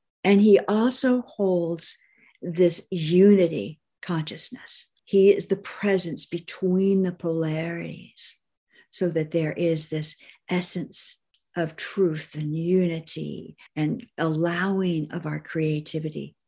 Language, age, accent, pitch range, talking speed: English, 50-69, American, 160-200 Hz, 105 wpm